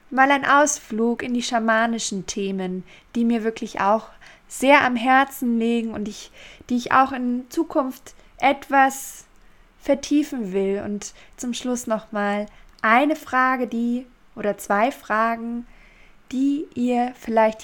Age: 20-39